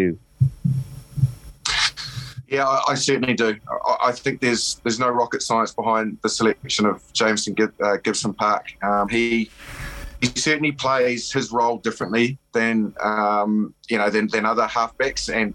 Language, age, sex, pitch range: English, 30-49, male, 110-140 Hz